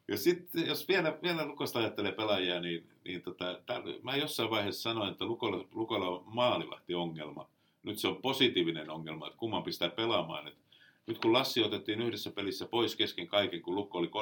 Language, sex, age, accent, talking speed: Finnish, male, 50-69, native, 180 wpm